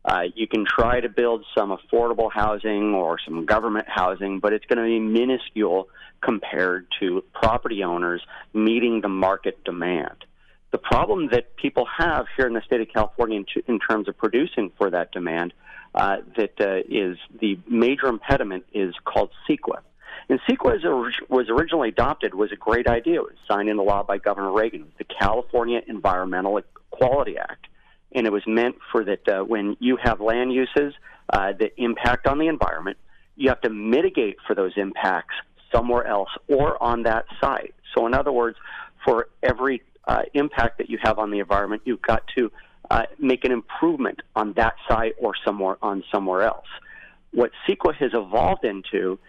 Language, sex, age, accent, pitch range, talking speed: English, male, 40-59, American, 100-120 Hz, 175 wpm